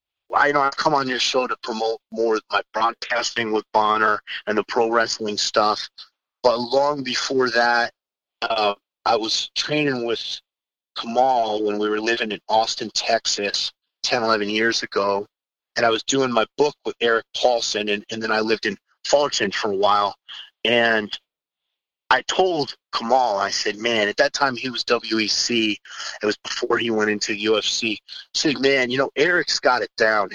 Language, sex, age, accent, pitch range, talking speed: English, male, 30-49, American, 110-125 Hz, 175 wpm